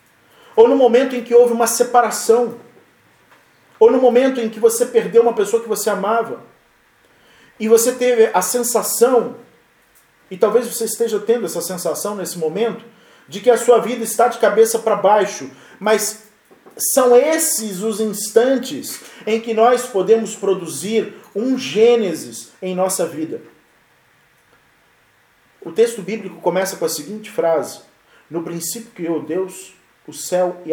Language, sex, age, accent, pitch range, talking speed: Portuguese, male, 40-59, Brazilian, 185-245 Hz, 145 wpm